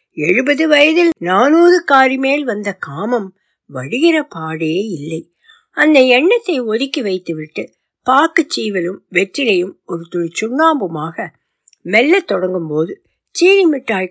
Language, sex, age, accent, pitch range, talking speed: Tamil, female, 60-79, native, 175-290 Hz, 60 wpm